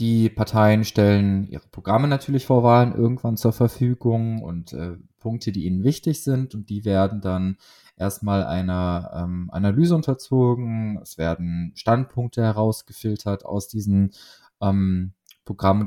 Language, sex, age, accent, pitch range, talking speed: German, male, 20-39, German, 95-115 Hz, 130 wpm